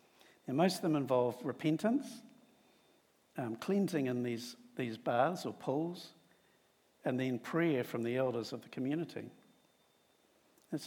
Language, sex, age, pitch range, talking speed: English, male, 60-79, 125-155 Hz, 135 wpm